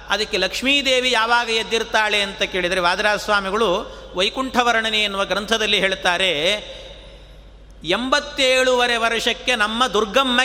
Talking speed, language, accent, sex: 90 wpm, Kannada, native, male